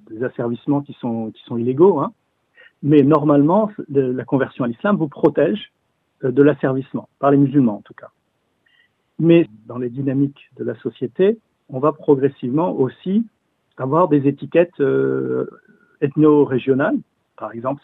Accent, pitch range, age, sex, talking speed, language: French, 125-160 Hz, 50-69, male, 140 wpm, French